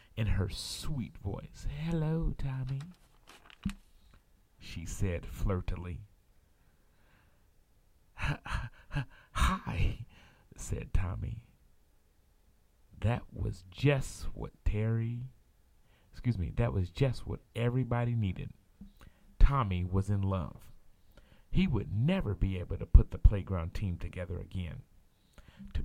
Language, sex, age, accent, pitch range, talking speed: English, male, 40-59, American, 90-120 Hz, 95 wpm